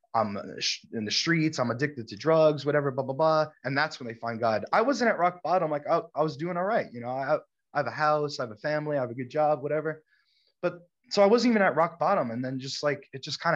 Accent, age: American, 20-39